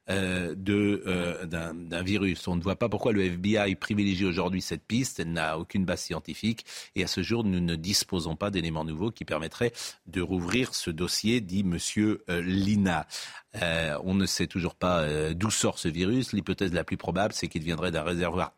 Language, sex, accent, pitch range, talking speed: French, male, French, 90-120 Hz, 200 wpm